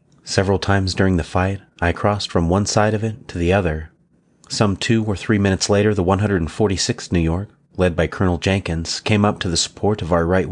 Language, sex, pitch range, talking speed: English, male, 85-105 Hz, 210 wpm